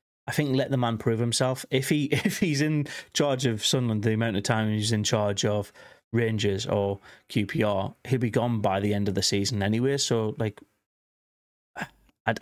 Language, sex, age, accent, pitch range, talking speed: English, male, 30-49, British, 105-120 Hz, 190 wpm